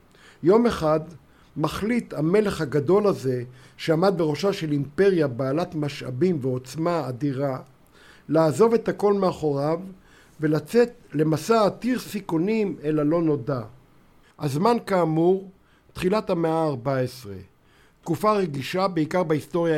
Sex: male